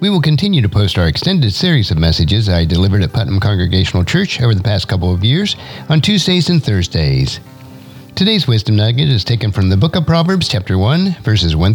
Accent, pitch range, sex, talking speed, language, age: American, 100-145 Hz, male, 205 wpm, English, 50-69